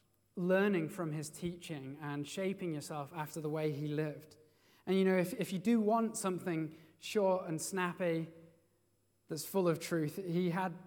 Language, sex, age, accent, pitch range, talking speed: English, male, 20-39, British, 135-175 Hz, 165 wpm